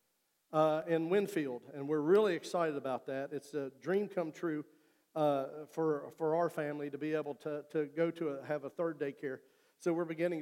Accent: American